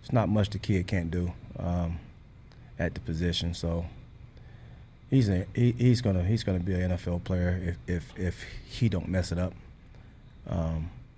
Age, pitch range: 30-49, 90-110 Hz